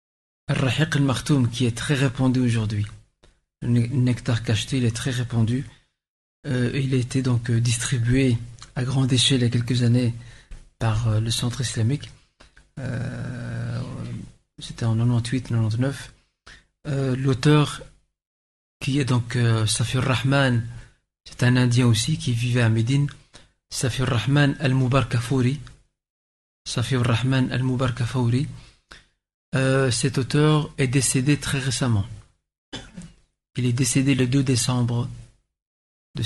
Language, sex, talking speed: French, male, 120 wpm